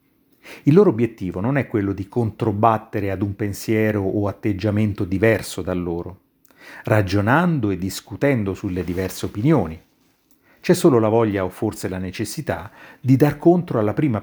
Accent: native